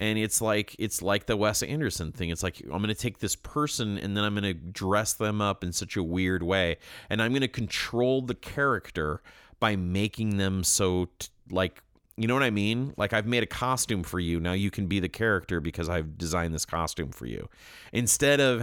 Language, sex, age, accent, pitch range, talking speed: English, male, 30-49, American, 85-110 Hz, 220 wpm